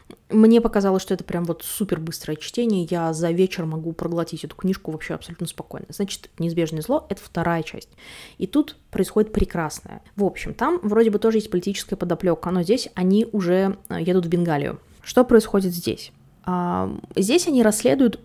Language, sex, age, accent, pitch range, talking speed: Russian, female, 20-39, native, 175-220 Hz, 170 wpm